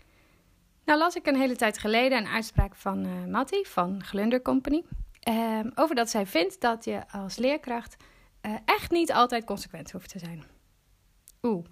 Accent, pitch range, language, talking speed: Dutch, 190-260 Hz, Dutch, 170 wpm